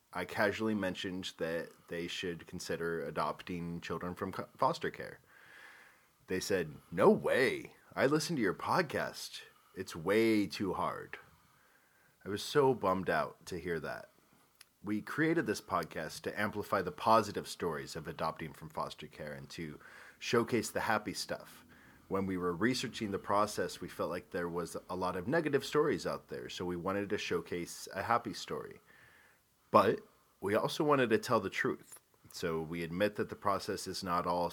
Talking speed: 165 wpm